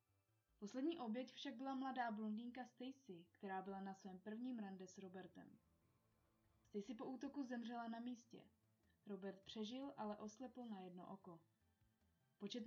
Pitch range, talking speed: 180-245 Hz, 135 wpm